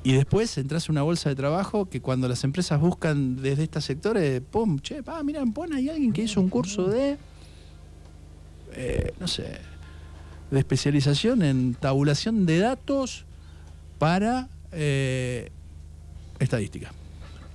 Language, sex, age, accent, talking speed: Spanish, male, 50-69, Argentinian, 135 wpm